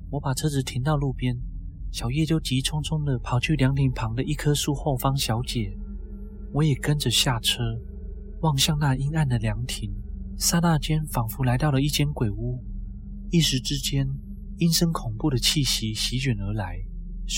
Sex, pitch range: male, 105-145 Hz